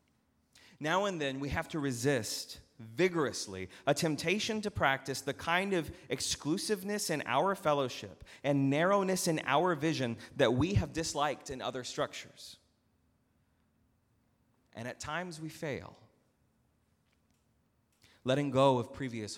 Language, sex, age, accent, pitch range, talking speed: English, male, 30-49, American, 120-165 Hz, 125 wpm